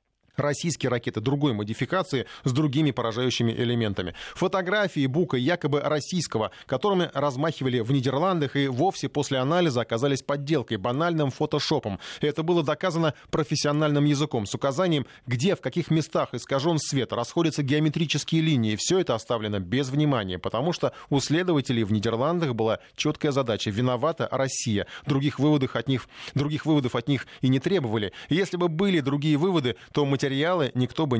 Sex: male